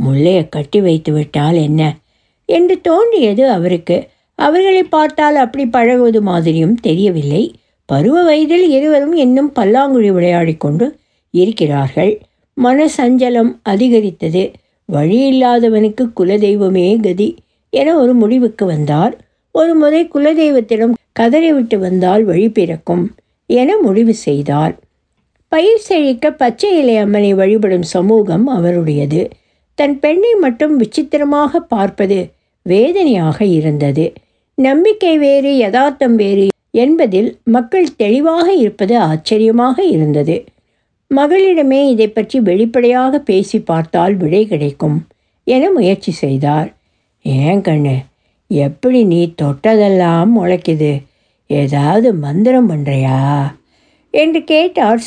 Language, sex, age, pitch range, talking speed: Tamil, female, 60-79, 170-275 Hz, 95 wpm